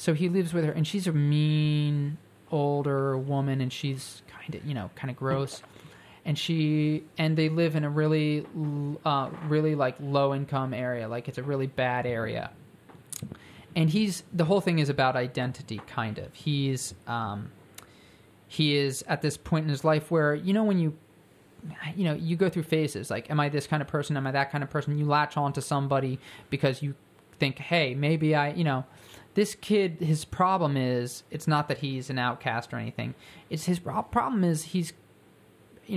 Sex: male